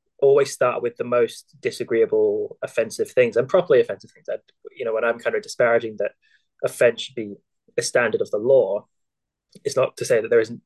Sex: male